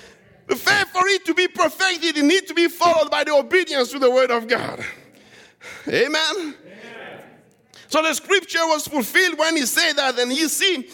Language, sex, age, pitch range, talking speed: English, male, 60-79, 270-340 Hz, 180 wpm